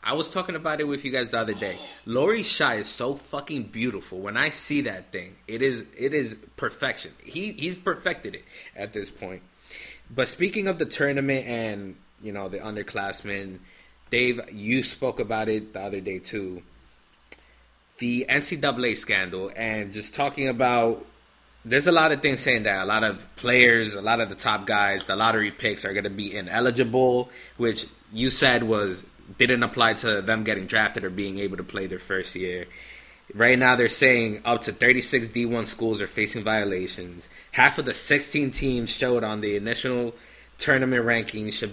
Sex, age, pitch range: male, 20-39, 100-130 Hz